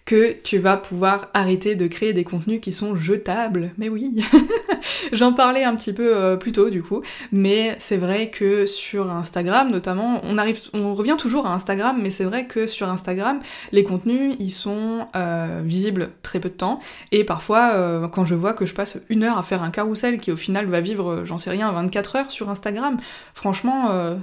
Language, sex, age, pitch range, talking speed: French, female, 20-39, 185-230 Hz, 205 wpm